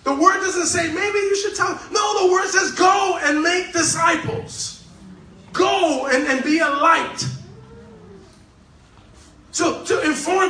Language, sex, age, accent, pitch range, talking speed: English, male, 30-49, American, 245-330 Hz, 150 wpm